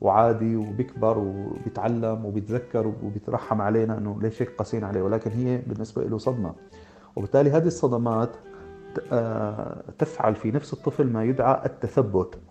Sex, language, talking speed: male, Arabic, 120 wpm